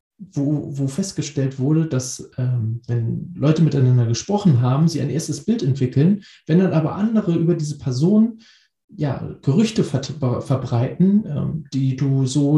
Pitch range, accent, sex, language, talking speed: 130-170 Hz, German, male, German, 140 wpm